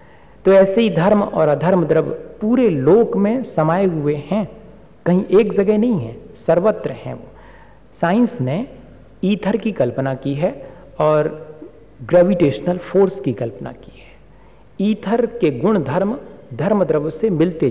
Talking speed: 140 wpm